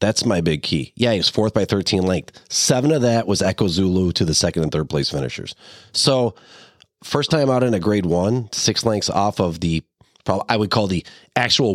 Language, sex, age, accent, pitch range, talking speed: English, male, 30-49, American, 85-110 Hz, 215 wpm